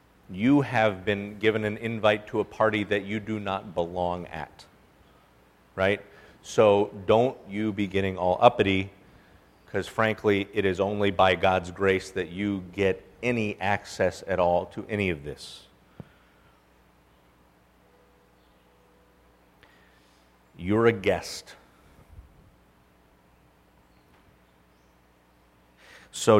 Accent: American